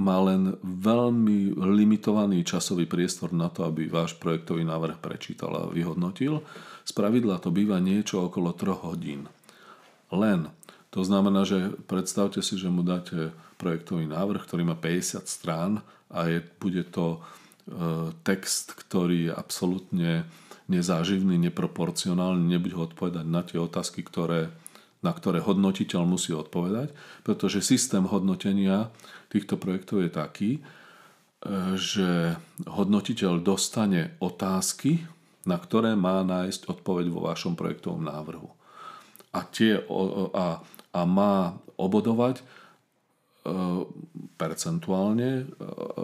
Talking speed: 110 wpm